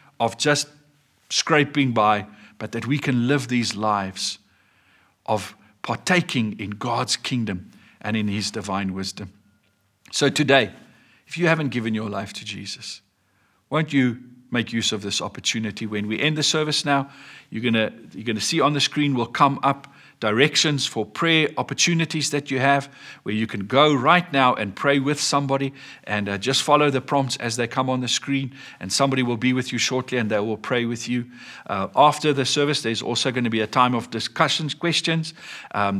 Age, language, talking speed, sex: 50-69, English, 190 wpm, male